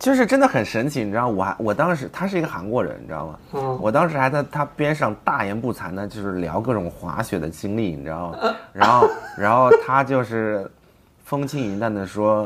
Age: 20-39